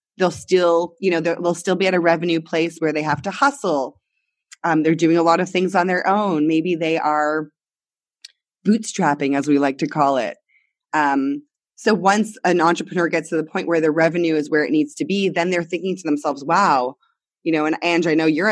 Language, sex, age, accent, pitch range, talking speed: English, female, 20-39, American, 155-190 Hz, 215 wpm